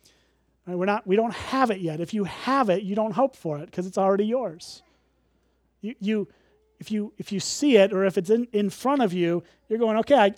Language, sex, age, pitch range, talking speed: English, male, 30-49, 175-225 Hz, 235 wpm